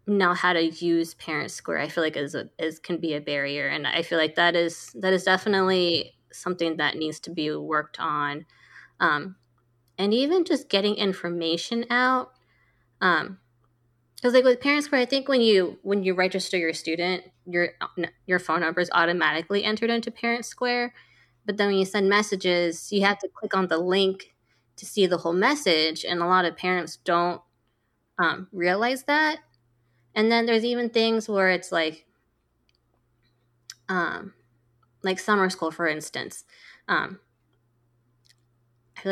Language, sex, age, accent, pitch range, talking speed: English, female, 20-39, American, 125-195 Hz, 165 wpm